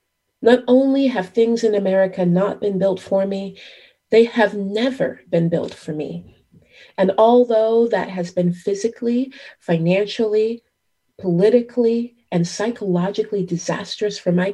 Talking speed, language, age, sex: 130 wpm, English, 30-49, female